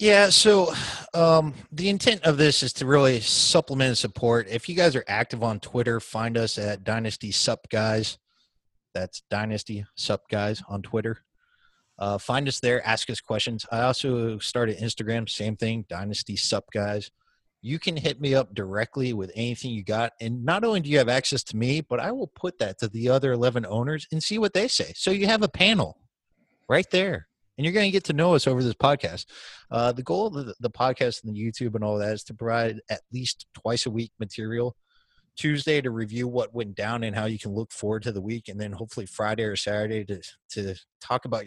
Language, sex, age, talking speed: English, male, 30-49, 215 wpm